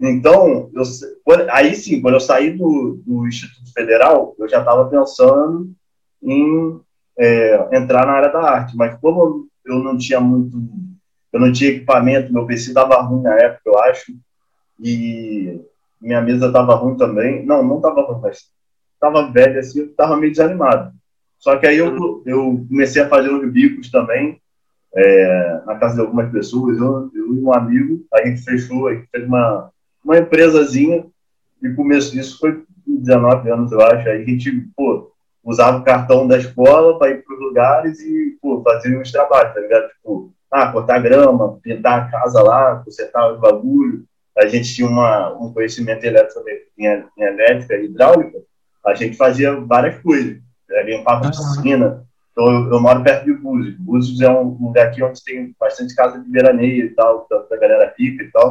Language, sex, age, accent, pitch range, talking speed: Portuguese, male, 20-39, Brazilian, 120-185 Hz, 175 wpm